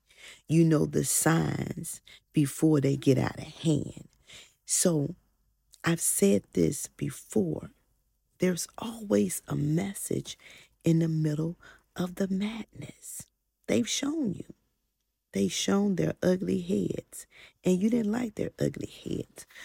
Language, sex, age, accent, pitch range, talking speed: English, female, 40-59, American, 150-205 Hz, 120 wpm